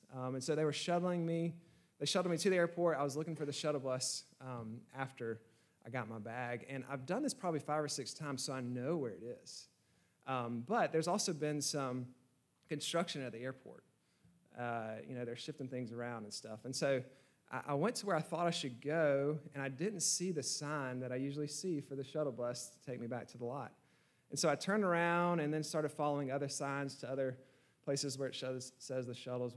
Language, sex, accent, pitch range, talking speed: English, male, American, 125-155 Hz, 230 wpm